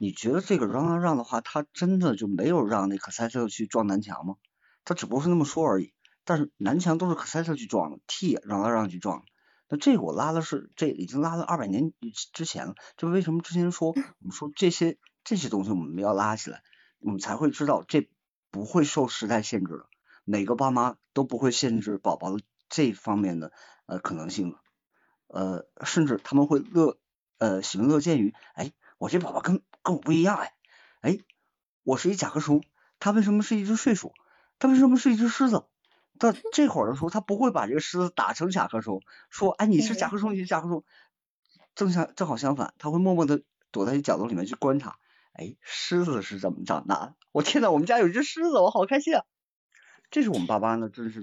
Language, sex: Chinese, male